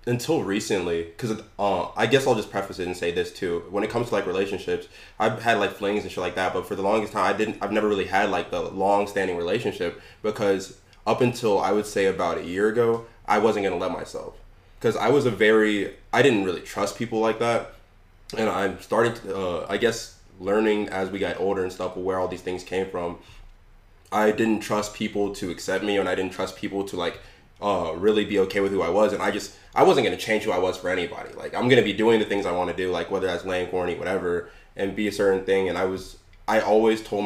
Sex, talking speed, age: male, 250 wpm, 20-39